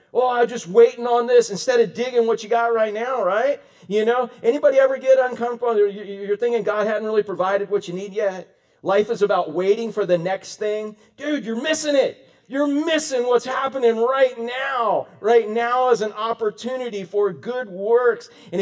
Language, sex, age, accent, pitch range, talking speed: English, male, 40-59, American, 205-260 Hz, 190 wpm